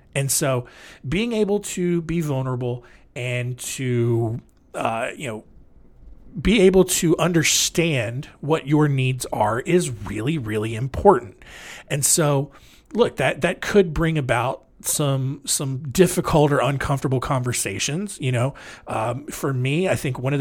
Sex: male